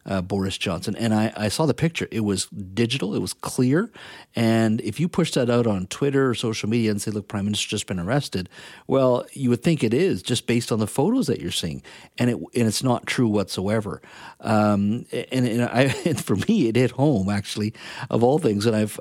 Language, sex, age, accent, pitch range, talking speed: English, male, 50-69, American, 105-140 Hz, 220 wpm